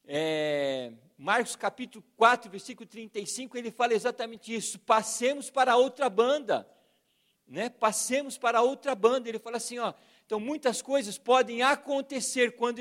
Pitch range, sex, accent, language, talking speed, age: 195-240 Hz, male, Brazilian, Portuguese, 135 wpm, 50-69